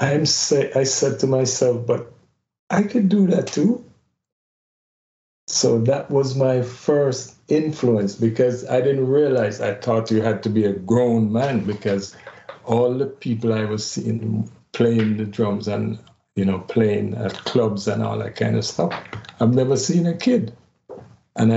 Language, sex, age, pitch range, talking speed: English, male, 60-79, 105-135 Hz, 160 wpm